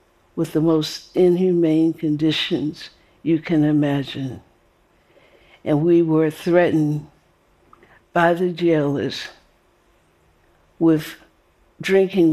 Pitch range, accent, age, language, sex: 140-165 Hz, American, 60-79, Korean, female